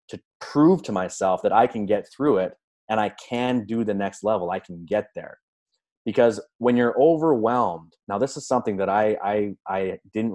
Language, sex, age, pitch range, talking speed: English, male, 20-39, 100-120 Hz, 195 wpm